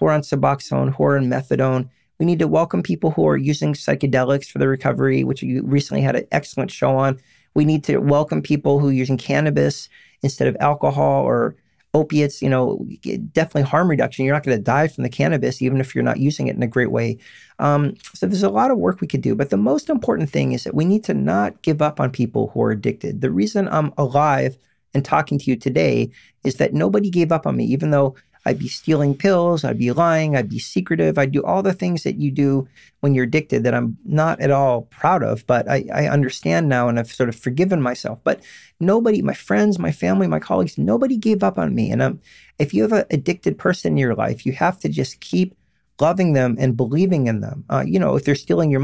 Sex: male